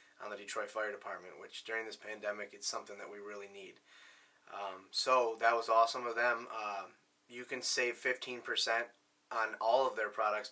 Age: 20-39